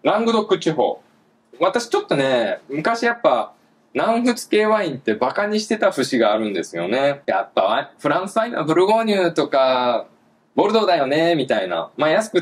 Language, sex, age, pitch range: Japanese, male, 20-39, 160-235 Hz